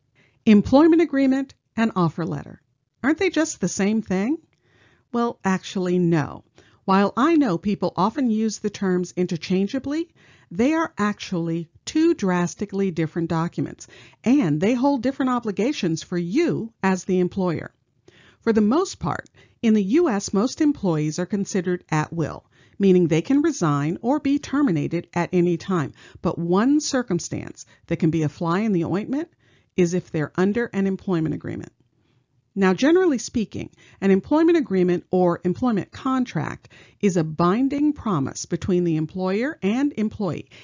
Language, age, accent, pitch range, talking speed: English, 50-69, American, 165-235 Hz, 145 wpm